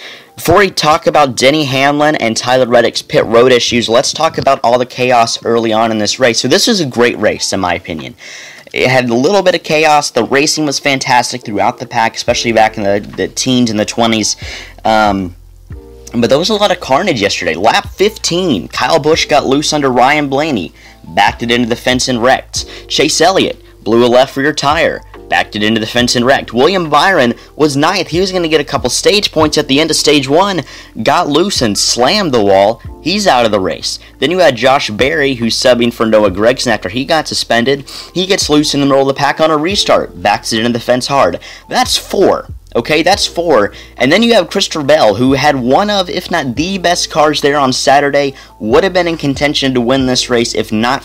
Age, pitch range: 30-49, 115-150 Hz